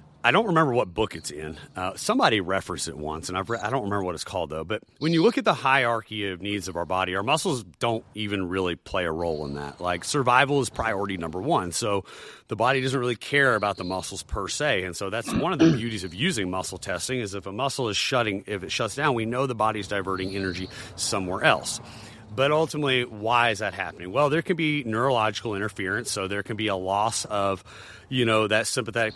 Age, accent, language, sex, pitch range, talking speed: 30-49, American, English, male, 95-115 Hz, 235 wpm